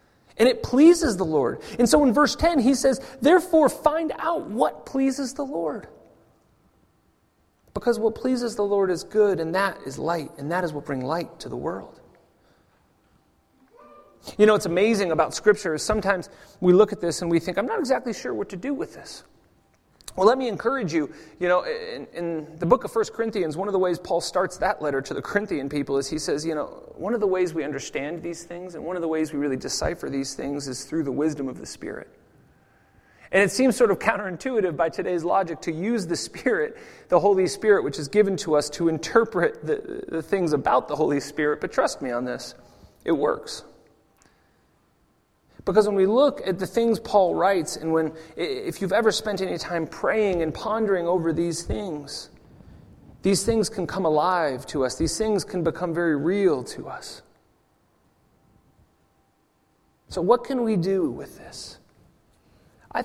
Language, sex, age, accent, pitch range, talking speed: English, male, 30-49, American, 165-225 Hz, 190 wpm